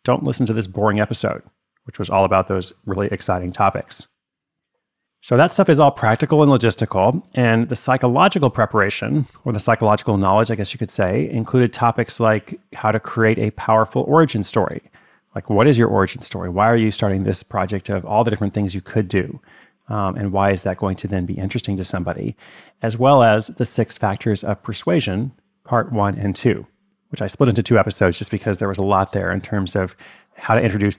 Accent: American